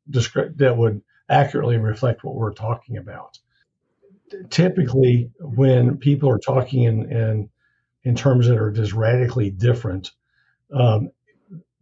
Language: English